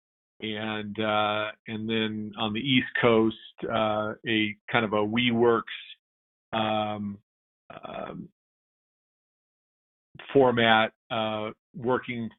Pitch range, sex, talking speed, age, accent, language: 105-115 Hz, male, 90 wpm, 50-69, American, English